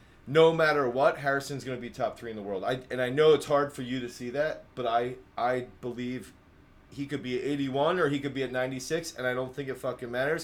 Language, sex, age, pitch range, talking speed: English, male, 30-49, 115-140 Hz, 260 wpm